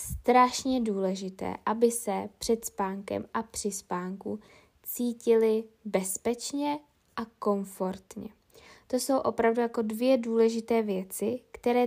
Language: Czech